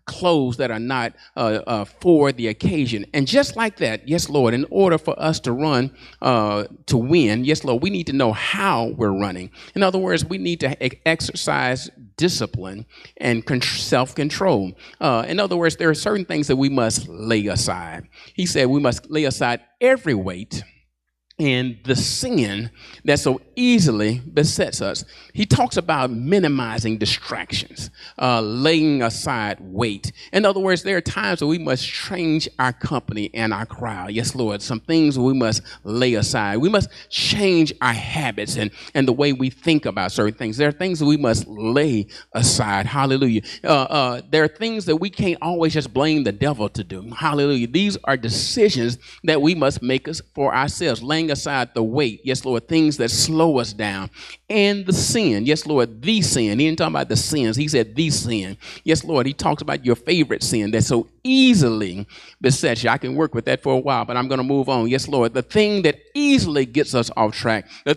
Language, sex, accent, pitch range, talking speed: English, male, American, 115-160 Hz, 190 wpm